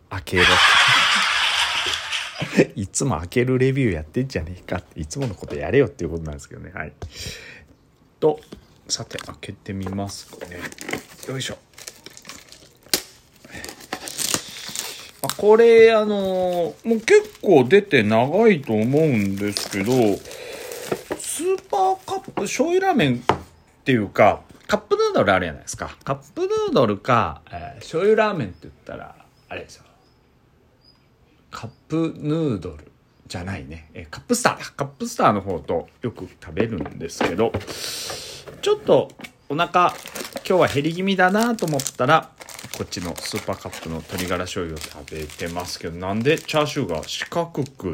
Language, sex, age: Japanese, male, 40-59